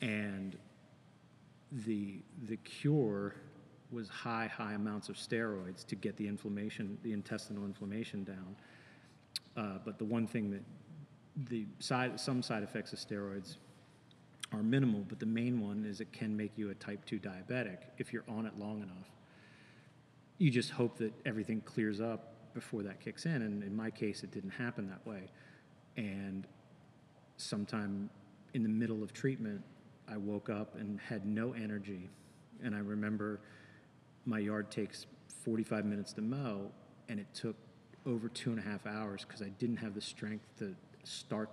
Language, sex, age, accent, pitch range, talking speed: English, male, 40-59, American, 105-120 Hz, 165 wpm